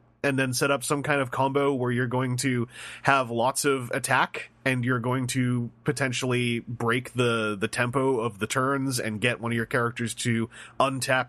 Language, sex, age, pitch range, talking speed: English, male, 30-49, 115-140 Hz, 190 wpm